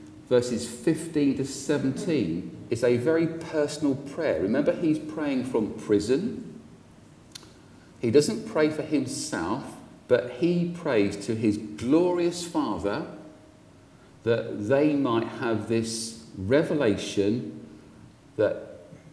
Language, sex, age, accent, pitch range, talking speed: English, male, 40-59, British, 105-155 Hz, 105 wpm